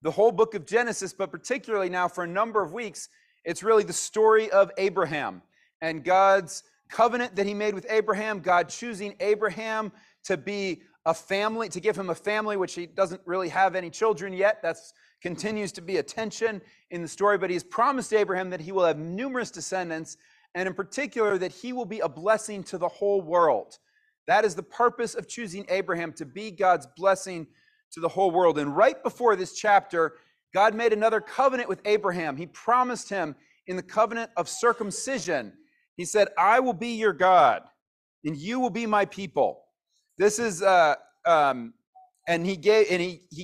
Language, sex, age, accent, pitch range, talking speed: English, male, 30-49, American, 180-225 Hz, 185 wpm